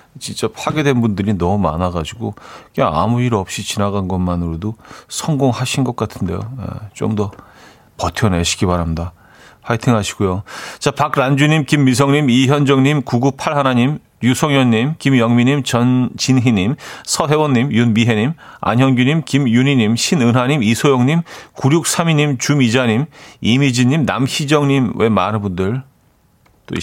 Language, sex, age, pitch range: Korean, male, 40-59, 100-135 Hz